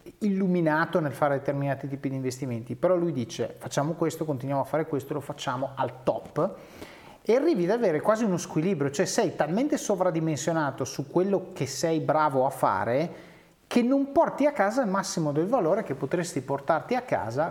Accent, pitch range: native, 140-180 Hz